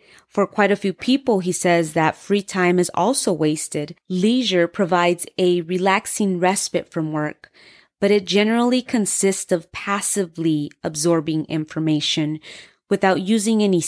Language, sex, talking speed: English, female, 135 wpm